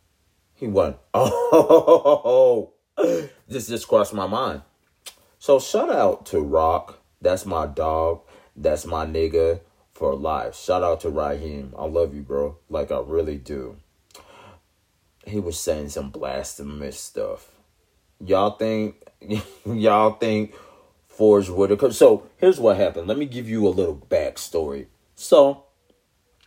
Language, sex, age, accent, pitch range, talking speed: English, male, 30-49, American, 85-135 Hz, 135 wpm